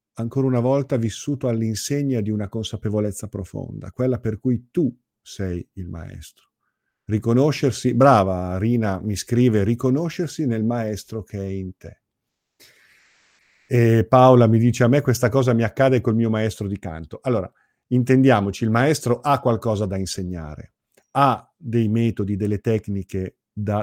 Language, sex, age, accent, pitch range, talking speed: Italian, male, 50-69, native, 100-120 Hz, 145 wpm